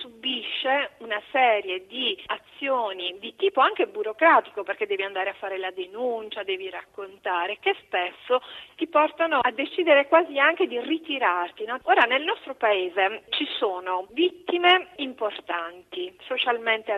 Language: Italian